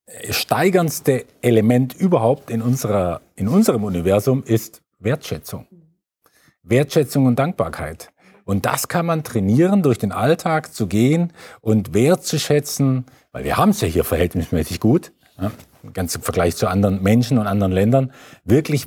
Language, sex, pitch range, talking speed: German, male, 100-135 Hz, 145 wpm